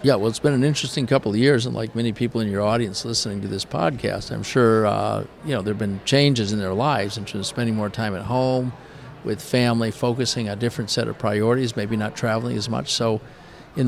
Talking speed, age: 240 wpm, 50-69